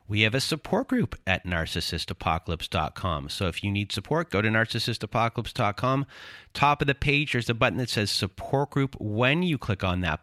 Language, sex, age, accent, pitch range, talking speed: English, male, 30-49, American, 95-115 Hz, 180 wpm